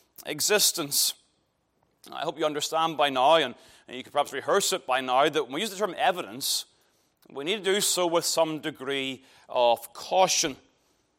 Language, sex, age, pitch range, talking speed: English, male, 30-49, 155-195 Hz, 170 wpm